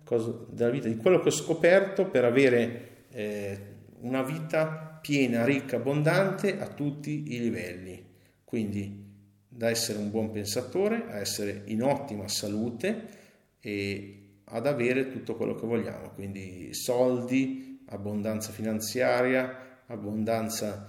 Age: 50-69